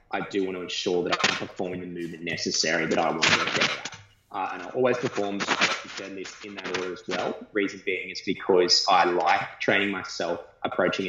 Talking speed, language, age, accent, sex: 200 wpm, English, 20-39, Australian, male